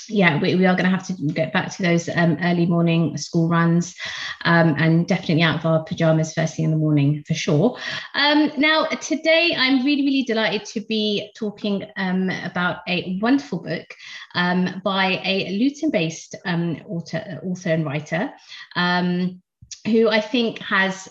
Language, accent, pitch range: English, British, 165-210 Hz